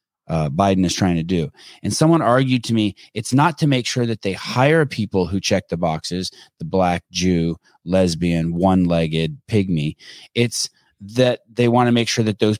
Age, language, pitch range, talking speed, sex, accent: 30-49, English, 105-140 Hz, 185 wpm, male, American